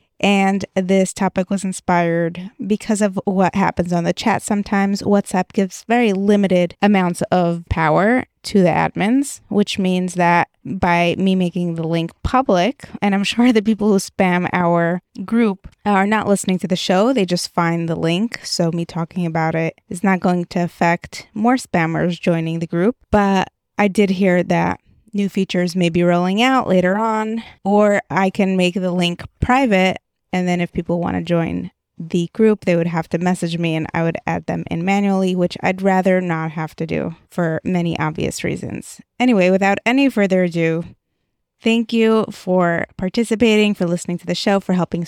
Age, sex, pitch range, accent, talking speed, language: 20-39, female, 175-210 Hz, American, 180 wpm, English